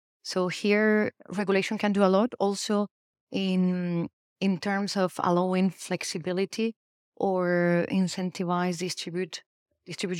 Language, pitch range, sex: English, 170-185 Hz, female